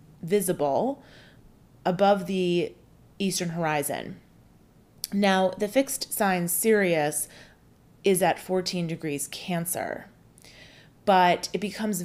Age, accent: 30-49, American